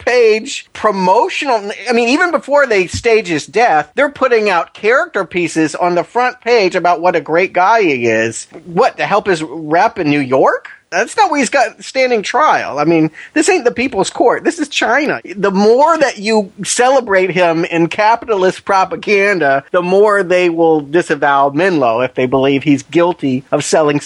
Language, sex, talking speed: English, male, 180 wpm